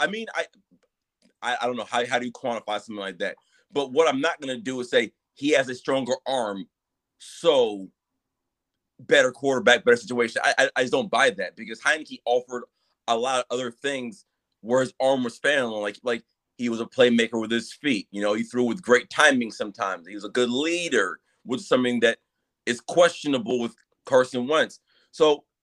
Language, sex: English, male